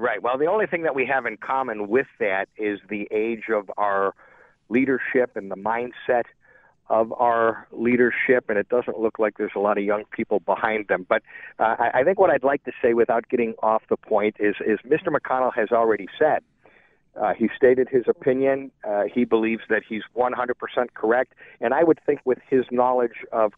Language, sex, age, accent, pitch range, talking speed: English, male, 50-69, American, 110-135 Hz, 200 wpm